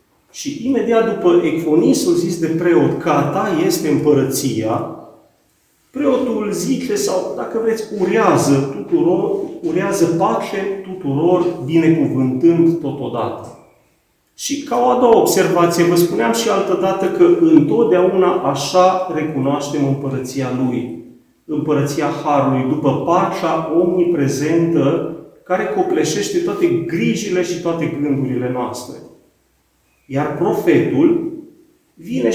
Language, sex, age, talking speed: Romanian, male, 40-59, 100 wpm